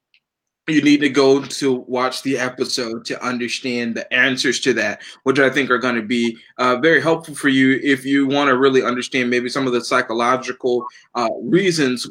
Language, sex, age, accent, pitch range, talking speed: English, male, 20-39, American, 130-165 Hz, 185 wpm